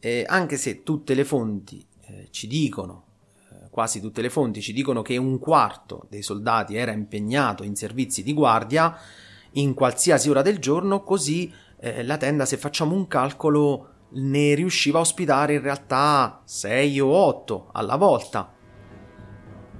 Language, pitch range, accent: Italian, 115-150 Hz, native